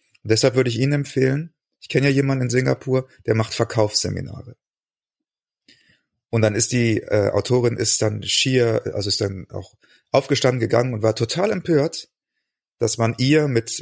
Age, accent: 30-49, German